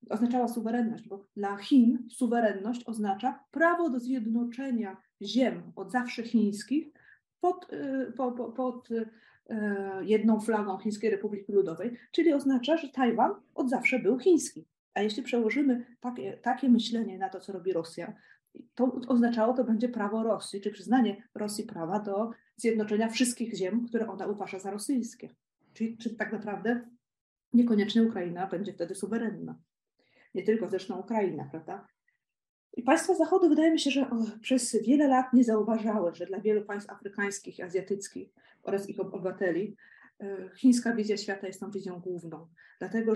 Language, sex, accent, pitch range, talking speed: Polish, female, native, 195-245 Hz, 145 wpm